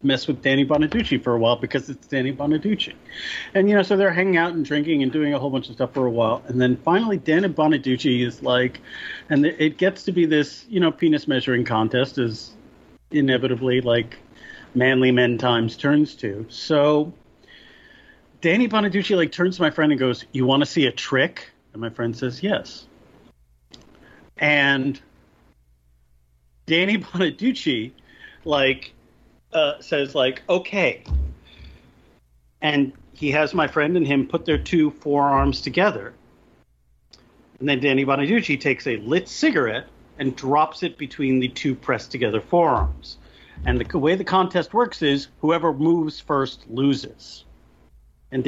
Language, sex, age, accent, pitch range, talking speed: English, male, 40-59, American, 120-160 Hz, 155 wpm